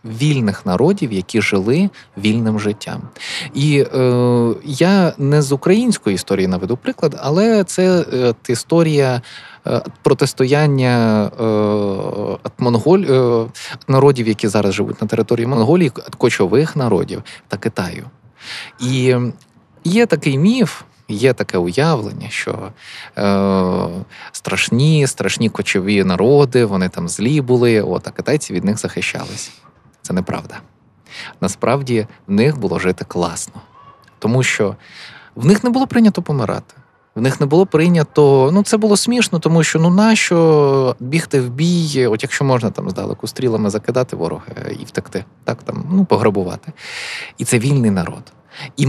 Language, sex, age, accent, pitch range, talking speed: Ukrainian, male, 20-39, native, 110-155 Hz, 135 wpm